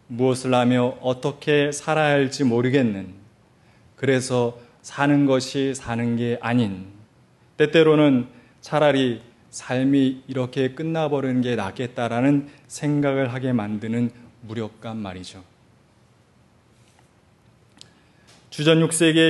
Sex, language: male, Korean